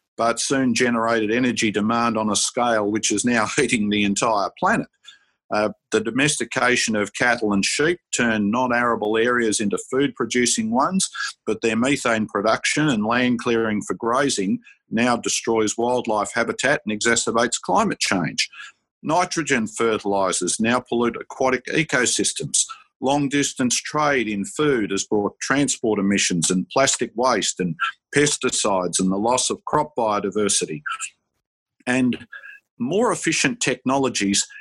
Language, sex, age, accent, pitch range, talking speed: English, male, 50-69, Australian, 105-135 Hz, 130 wpm